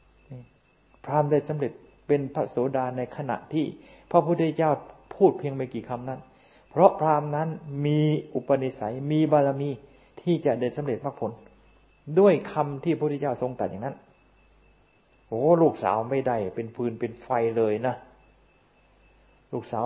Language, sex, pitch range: Thai, male, 120-150 Hz